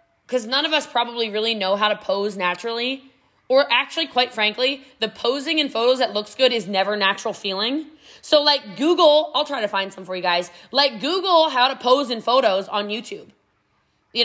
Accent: American